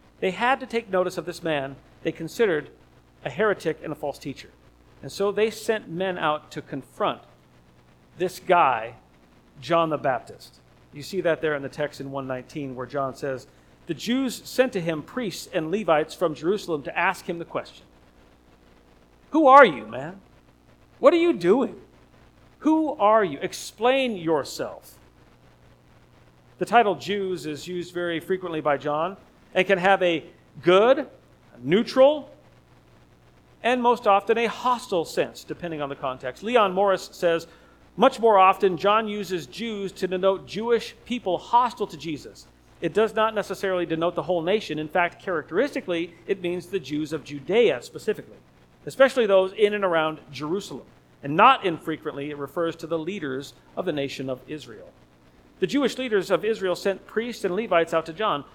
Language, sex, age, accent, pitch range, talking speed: English, male, 50-69, American, 145-205 Hz, 165 wpm